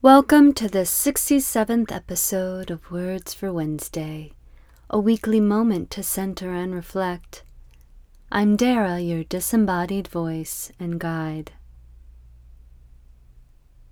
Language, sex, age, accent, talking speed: English, female, 30-49, American, 100 wpm